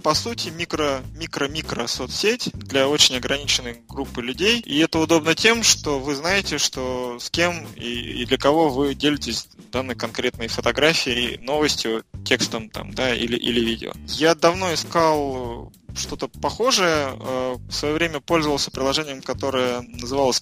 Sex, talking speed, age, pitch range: male, 140 wpm, 20-39, 125-155 Hz